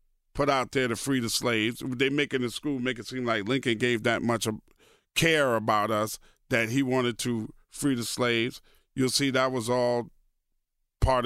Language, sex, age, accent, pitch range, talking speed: English, male, 40-59, American, 110-130 Hz, 195 wpm